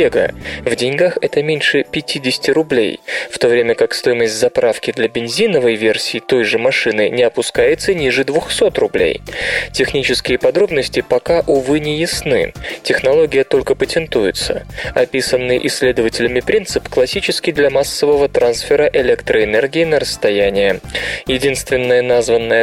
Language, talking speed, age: Russian, 115 wpm, 20-39